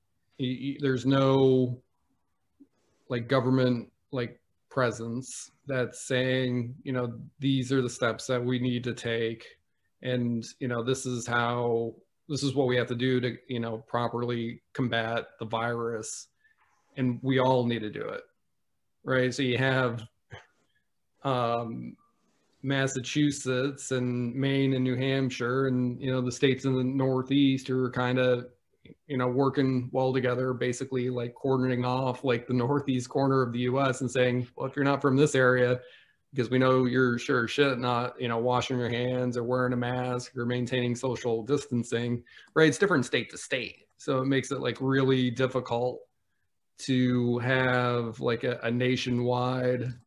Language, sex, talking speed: English, male, 160 wpm